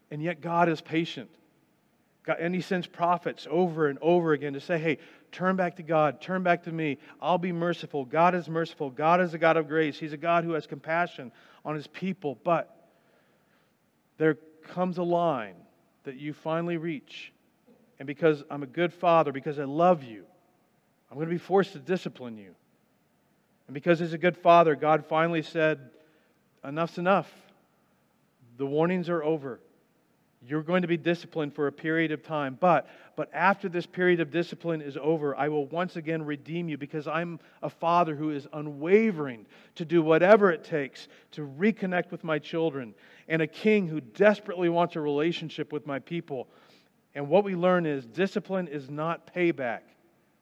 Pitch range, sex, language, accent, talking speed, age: 150-175 Hz, male, English, American, 175 wpm, 40-59